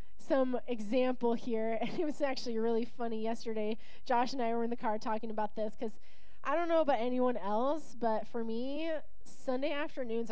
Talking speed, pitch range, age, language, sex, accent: 185 wpm, 220-275 Hz, 20-39, English, female, American